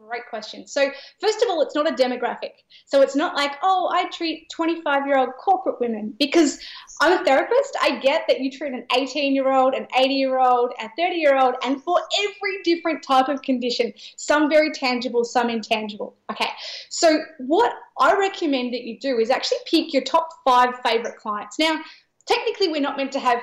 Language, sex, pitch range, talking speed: English, female, 245-330 Hz, 180 wpm